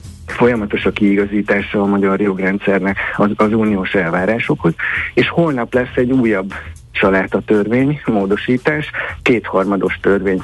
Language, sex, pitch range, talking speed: Hungarian, male, 95-120 Hz, 115 wpm